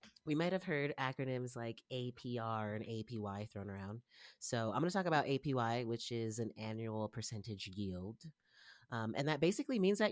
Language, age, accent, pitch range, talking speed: English, 30-49, American, 105-140 Hz, 180 wpm